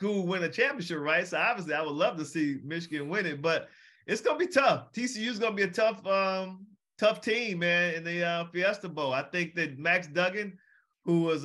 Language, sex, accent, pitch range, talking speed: English, male, American, 170-200 Hz, 220 wpm